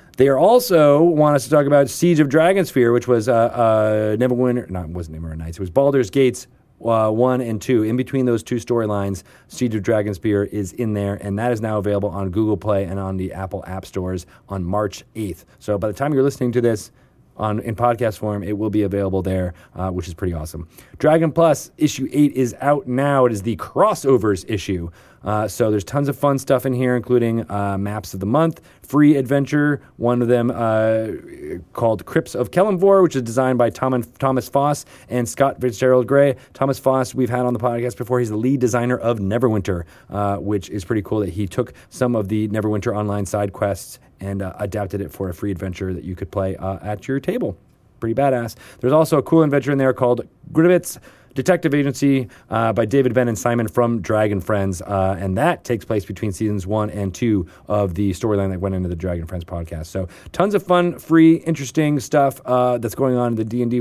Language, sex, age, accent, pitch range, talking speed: English, male, 30-49, American, 100-130 Hz, 210 wpm